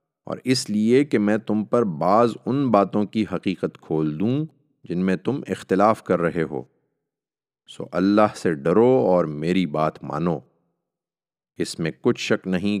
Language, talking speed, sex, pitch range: Urdu, 160 wpm, male, 80-105 Hz